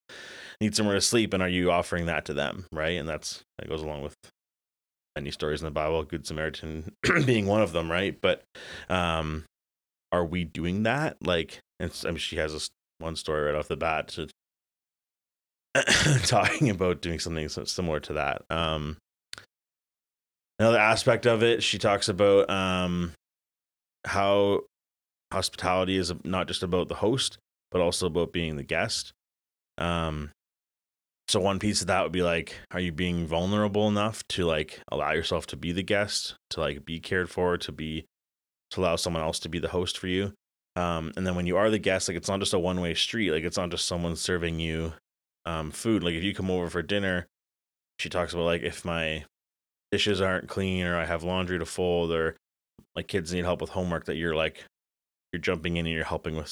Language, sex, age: English, male, 30-49